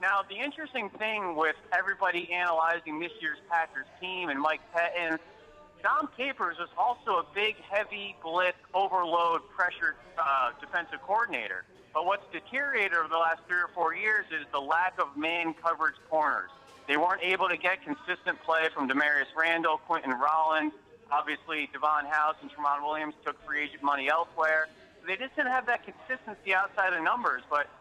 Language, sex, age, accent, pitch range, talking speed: English, male, 30-49, American, 155-195 Hz, 165 wpm